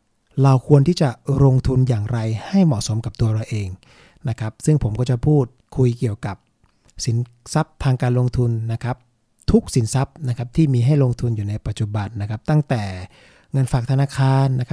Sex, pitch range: male, 115-140 Hz